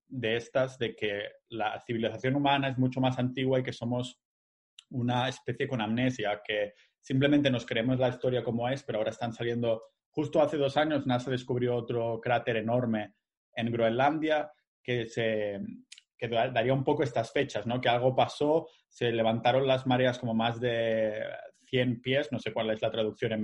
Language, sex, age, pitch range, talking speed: Spanish, male, 30-49, 115-130 Hz, 175 wpm